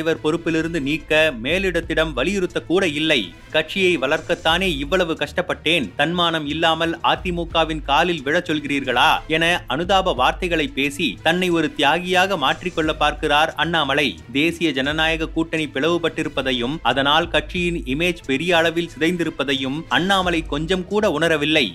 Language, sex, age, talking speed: Tamil, male, 30-49, 90 wpm